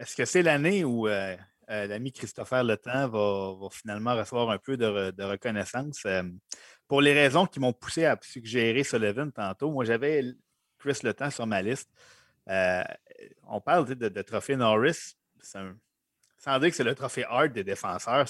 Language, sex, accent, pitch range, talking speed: French, male, Canadian, 100-130 Hz, 185 wpm